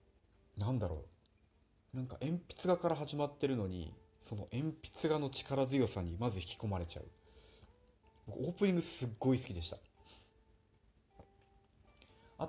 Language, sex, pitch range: Japanese, male, 90-130 Hz